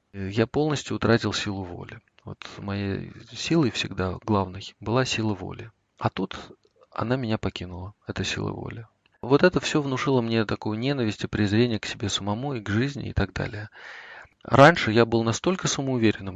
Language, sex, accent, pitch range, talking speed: Russian, male, native, 100-125 Hz, 160 wpm